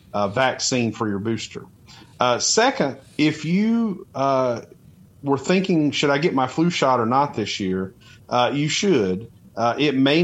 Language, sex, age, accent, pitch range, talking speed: English, male, 40-59, American, 115-150 Hz, 165 wpm